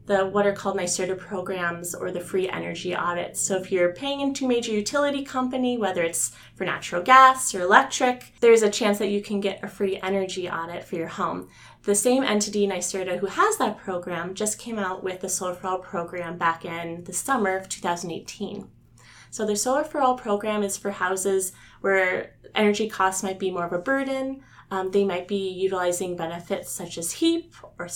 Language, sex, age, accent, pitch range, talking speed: English, female, 20-39, American, 180-215 Hz, 195 wpm